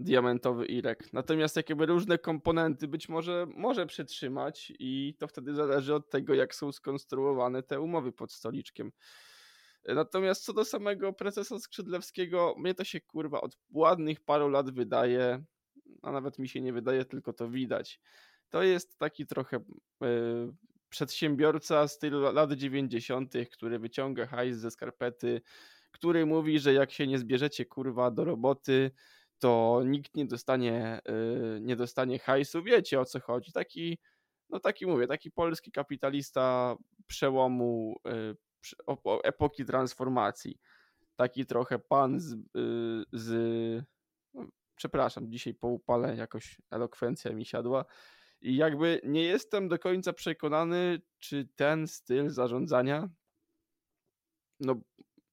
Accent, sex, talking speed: native, male, 125 wpm